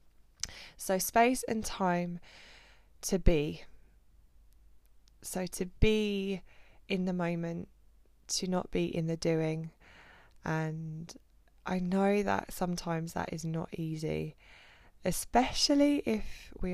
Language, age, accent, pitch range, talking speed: English, 20-39, British, 165-185 Hz, 110 wpm